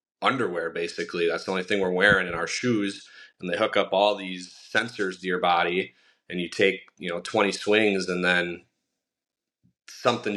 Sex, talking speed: male, 180 wpm